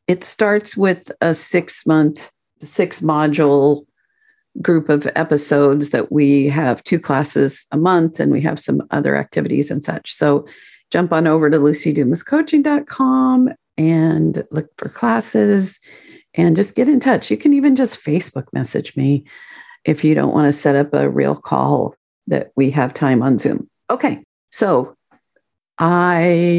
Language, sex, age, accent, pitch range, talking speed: English, female, 50-69, American, 145-185 Hz, 145 wpm